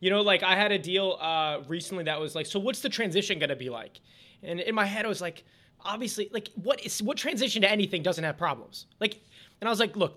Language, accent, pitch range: English, American, 170-210 Hz